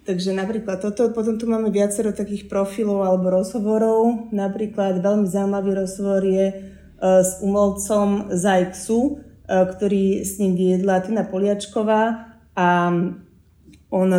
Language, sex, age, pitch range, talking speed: Slovak, female, 30-49, 180-200 Hz, 115 wpm